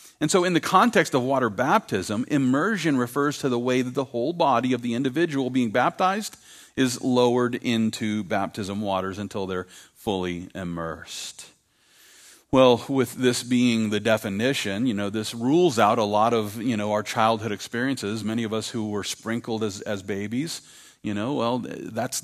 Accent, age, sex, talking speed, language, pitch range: American, 40-59, male, 170 wpm, English, 100-130 Hz